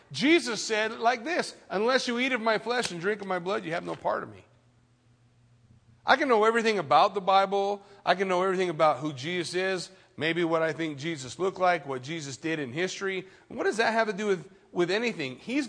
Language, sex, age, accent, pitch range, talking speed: English, male, 40-59, American, 155-235 Hz, 220 wpm